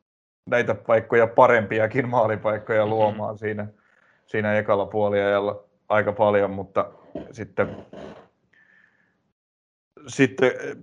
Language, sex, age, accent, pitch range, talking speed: Finnish, male, 30-49, native, 105-120 Hz, 70 wpm